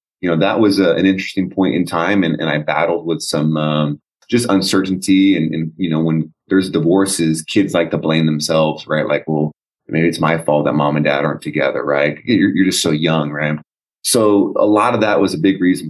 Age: 30-49